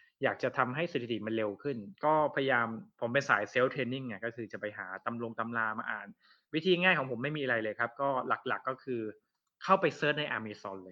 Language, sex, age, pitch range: Thai, male, 20-39, 115-155 Hz